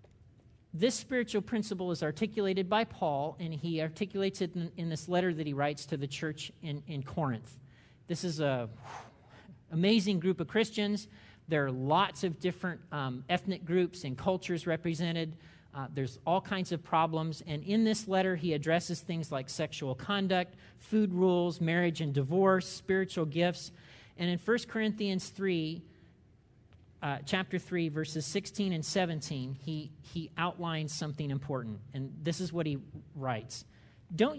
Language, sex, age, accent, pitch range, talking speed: English, male, 40-59, American, 145-190 Hz, 155 wpm